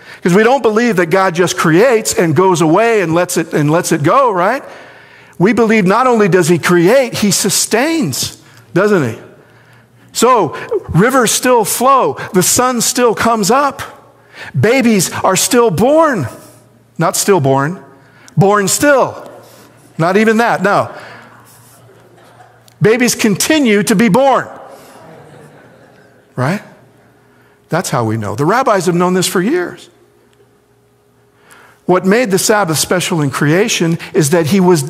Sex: male